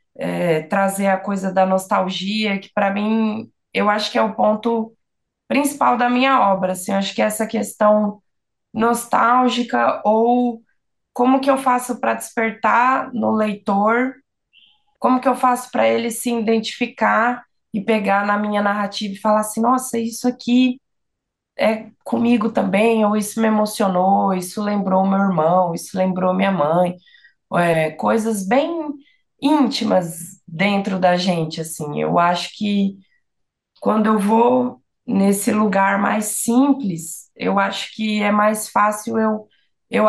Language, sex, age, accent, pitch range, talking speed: Portuguese, female, 20-39, Brazilian, 185-230 Hz, 140 wpm